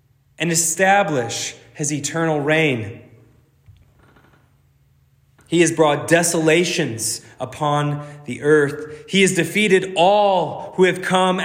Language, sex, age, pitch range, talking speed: English, male, 20-39, 140-175 Hz, 100 wpm